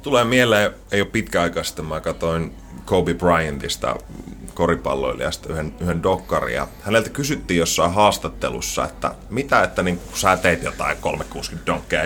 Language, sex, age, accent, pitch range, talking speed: Finnish, male, 30-49, native, 85-95 Hz, 130 wpm